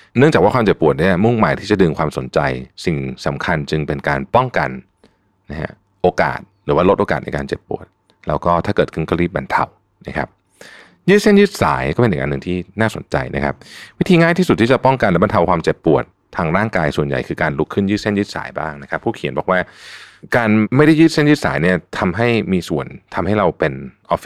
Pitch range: 75-120 Hz